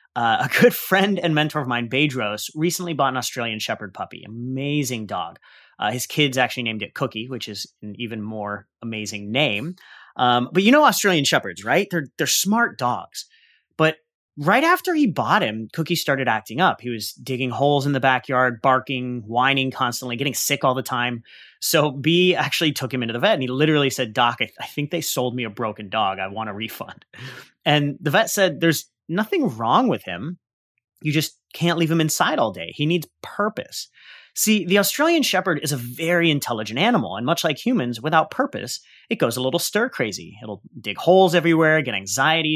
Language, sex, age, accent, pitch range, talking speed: English, male, 30-49, American, 125-180 Hz, 200 wpm